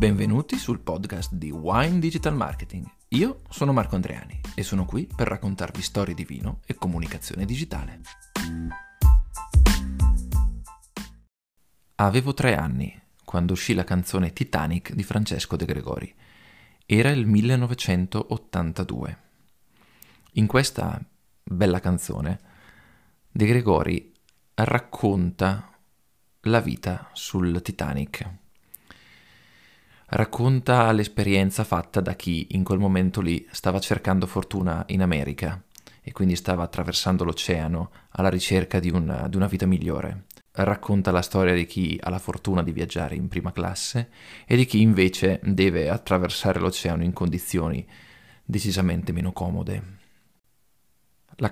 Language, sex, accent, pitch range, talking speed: Italian, male, native, 85-105 Hz, 120 wpm